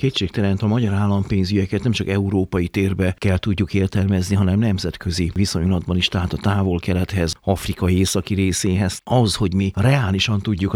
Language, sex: Hungarian, male